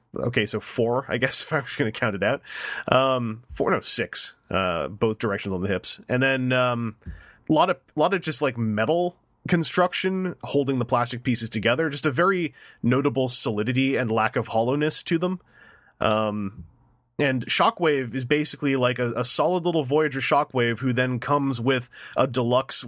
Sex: male